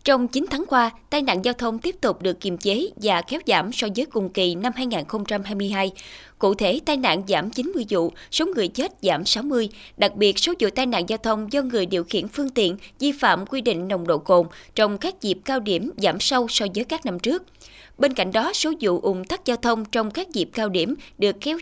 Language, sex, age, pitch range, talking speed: Vietnamese, female, 20-39, 195-275 Hz, 230 wpm